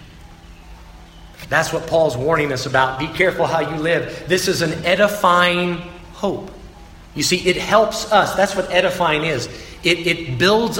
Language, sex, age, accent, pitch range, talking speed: English, male, 40-59, American, 115-180 Hz, 155 wpm